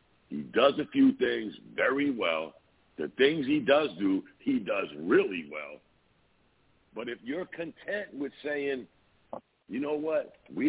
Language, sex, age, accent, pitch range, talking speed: English, male, 60-79, American, 120-180 Hz, 145 wpm